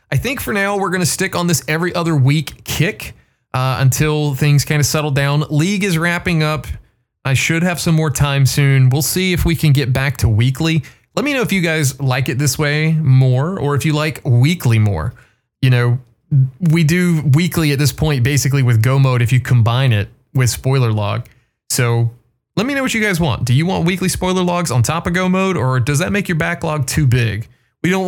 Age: 20-39